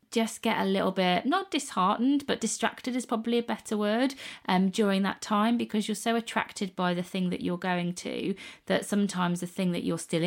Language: English